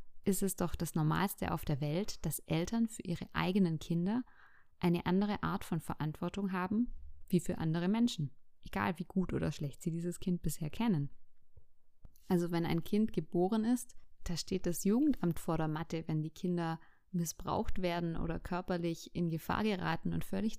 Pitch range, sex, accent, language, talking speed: 165-190 Hz, female, German, German, 170 wpm